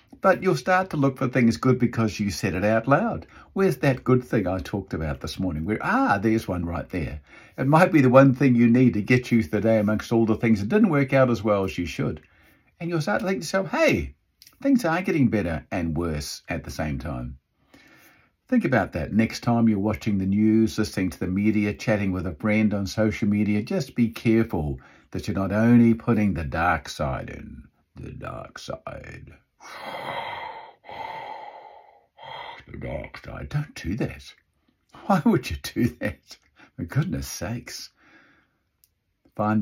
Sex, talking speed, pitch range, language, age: male, 185 wpm, 90-135 Hz, English, 50-69